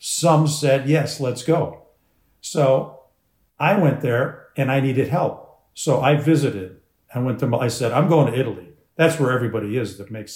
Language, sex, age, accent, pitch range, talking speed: English, male, 50-69, American, 115-145 Hz, 185 wpm